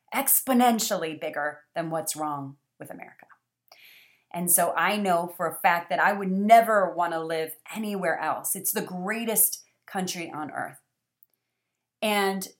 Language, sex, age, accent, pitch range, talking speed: English, female, 30-49, American, 170-215 Hz, 145 wpm